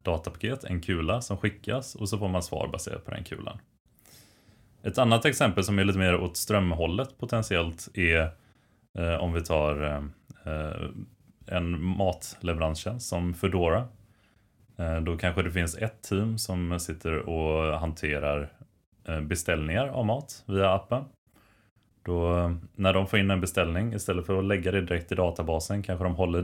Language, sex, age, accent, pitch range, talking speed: Swedish, male, 20-39, native, 80-105 Hz, 155 wpm